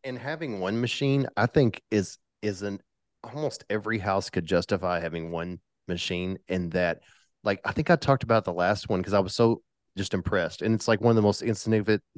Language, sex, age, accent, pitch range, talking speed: English, male, 30-49, American, 100-115 Hz, 205 wpm